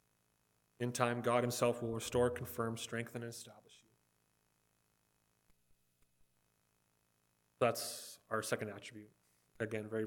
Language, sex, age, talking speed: English, male, 30-49, 100 wpm